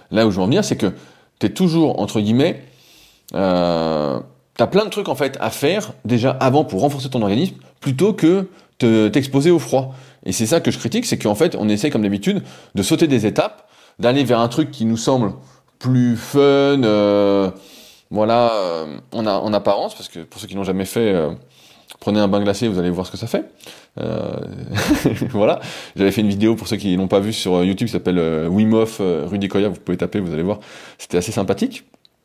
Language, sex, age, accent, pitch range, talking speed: French, male, 20-39, French, 100-135 Hz, 220 wpm